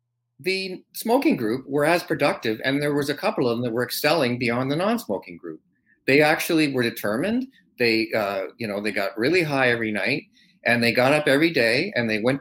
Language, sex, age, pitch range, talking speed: English, male, 40-59, 120-155 Hz, 210 wpm